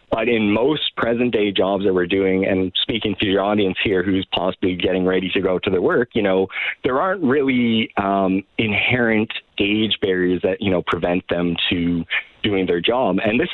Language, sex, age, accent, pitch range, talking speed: English, male, 30-49, American, 90-110 Hz, 195 wpm